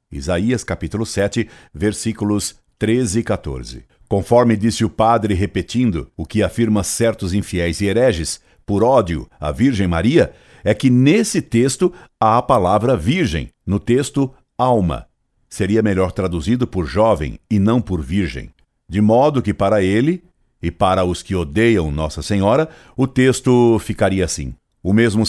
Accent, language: Brazilian, Portuguese